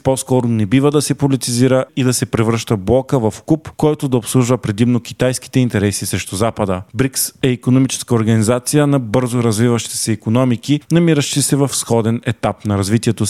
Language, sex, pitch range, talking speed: Bulgarian, male, 115-135 Hz, 165 wpm